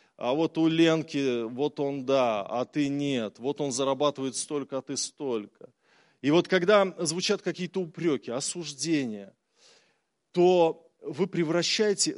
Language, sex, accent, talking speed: Russian, male, native, 135 wpm